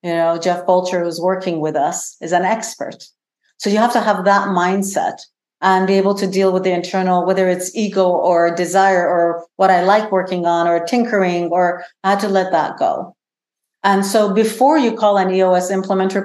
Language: English